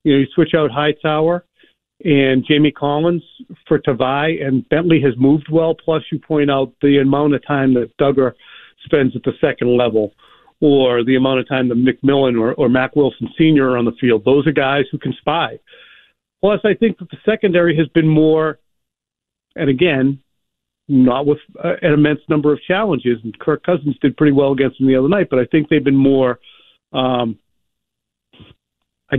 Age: 50-69